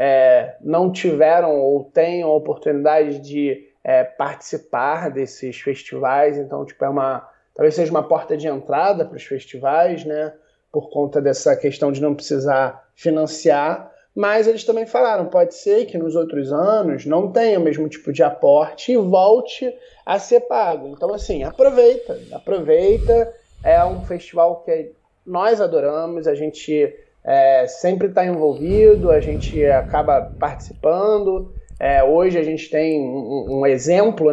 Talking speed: 140 wpm